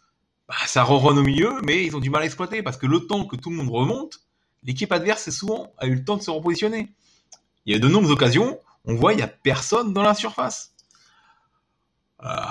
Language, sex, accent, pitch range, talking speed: French, male, French, 120-170 Hz, 220 wpm